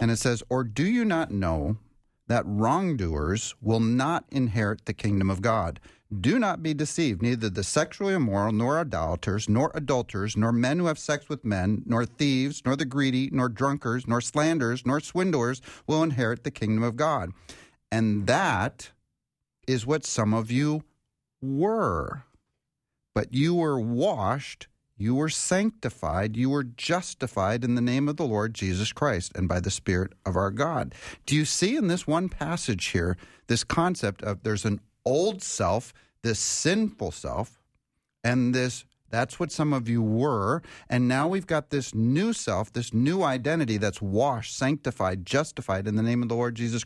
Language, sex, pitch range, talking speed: English, male, 110-150 Hz, 170 wpm